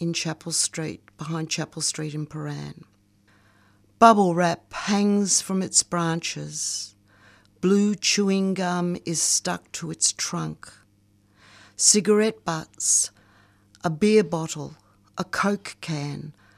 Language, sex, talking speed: English, female, 110 wpm